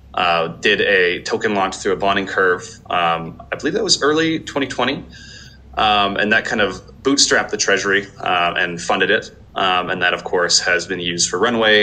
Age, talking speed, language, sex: 20-39, 195 wpm, English, male